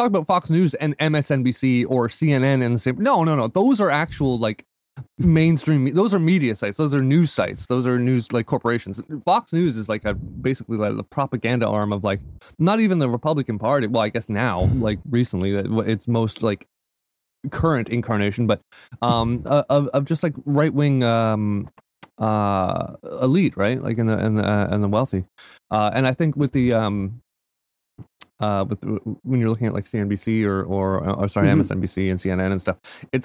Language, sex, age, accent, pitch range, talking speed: English, male, 20-39, American, 105-145 Hz, 190 wpm